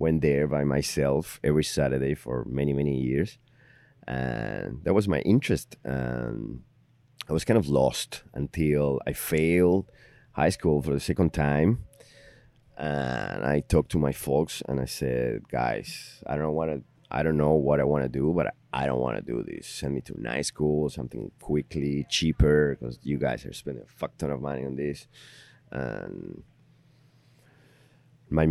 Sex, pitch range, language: male, 70-80 Hz, English